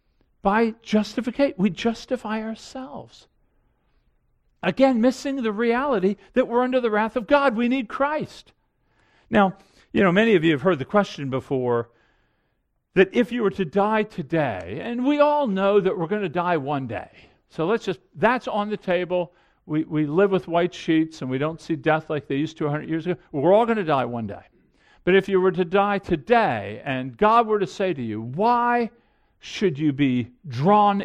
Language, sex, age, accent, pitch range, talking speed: English, male, 50-69, American, 165-240 Hz, 190 wpm